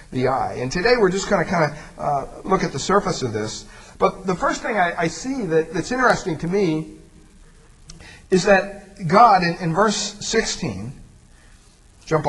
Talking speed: 180 wpm